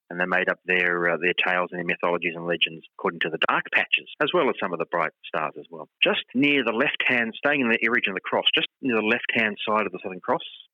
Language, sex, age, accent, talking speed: English, male, 30-49, Australian, 270 wpm